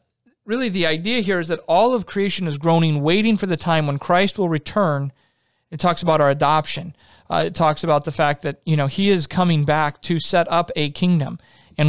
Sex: male